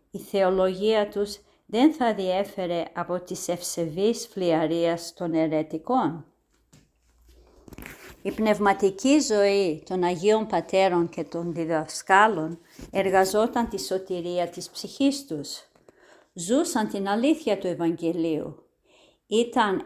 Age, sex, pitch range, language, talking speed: 50-69, female, 170-210 Hz, Greek, 100 wpm